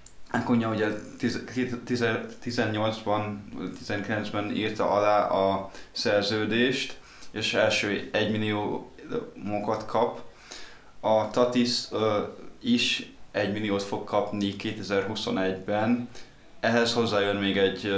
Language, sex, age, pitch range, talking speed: Hungarian, male, 20-39, 100-115 Hz, 90 wpm